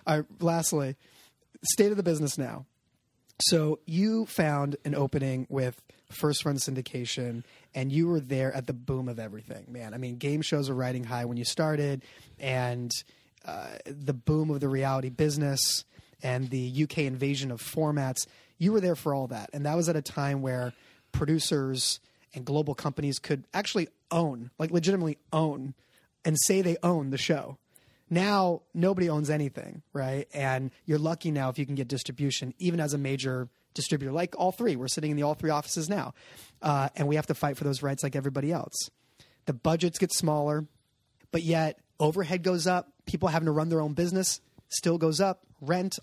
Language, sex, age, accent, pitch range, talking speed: English, male, 30-49, American, 135-170 Hz, 185 wpm